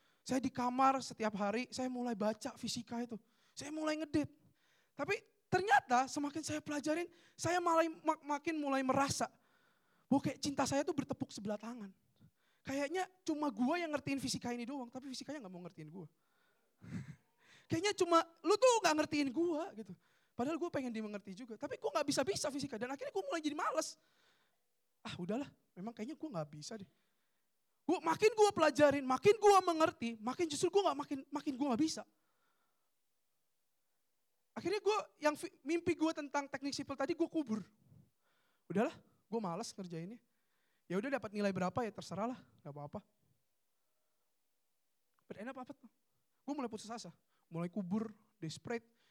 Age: 20-39